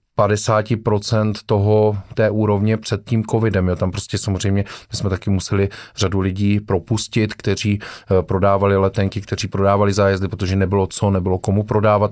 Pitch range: 100-115 Hz